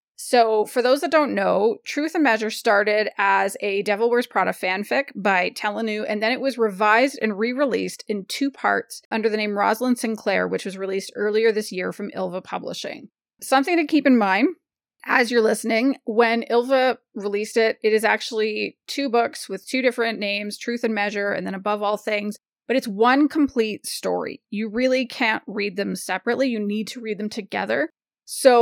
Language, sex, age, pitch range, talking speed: English, female, 30-49, 210-255 Hz, 185 wpm